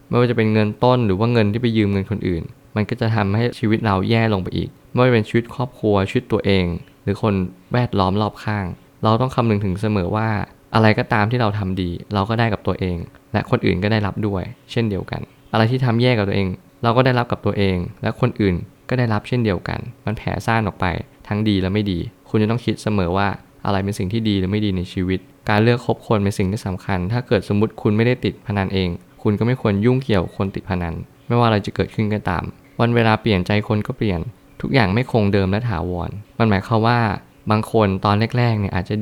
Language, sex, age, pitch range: Thai, male, 20-39, 100-115 Hz